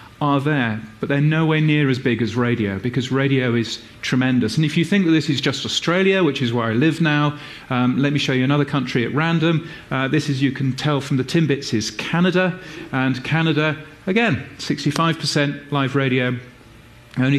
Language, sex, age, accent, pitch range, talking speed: English, male, 40-59, British, 115-150 Hz, 195 wpm